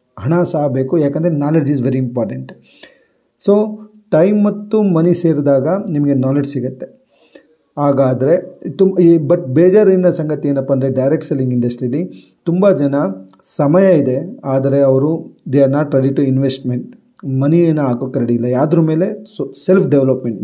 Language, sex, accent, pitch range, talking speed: Kannada, male, native, 130-170 Hz, 140 wpm